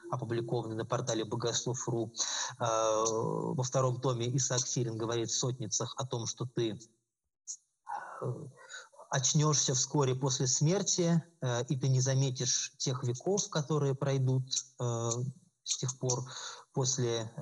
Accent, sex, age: native, male, 20-39